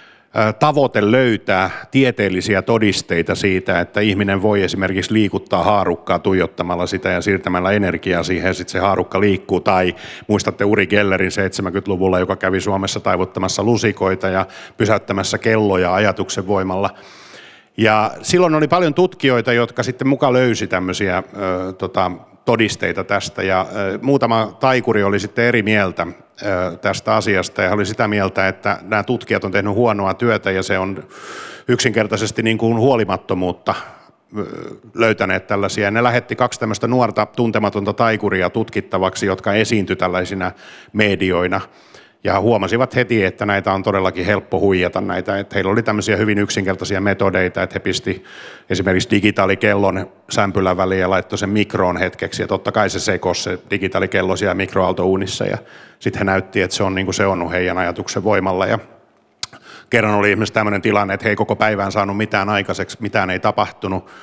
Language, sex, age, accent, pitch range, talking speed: Finnish, male, 50-69, native, 95-110 Hz, 145 wpm